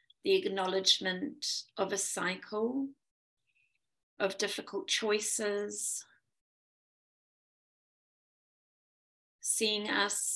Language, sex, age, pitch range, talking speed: English, female, 30-49, 175-205 Hz, 60 wpm